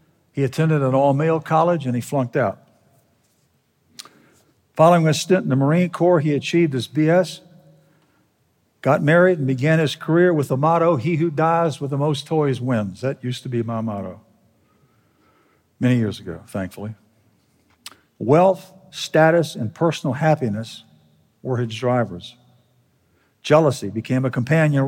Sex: male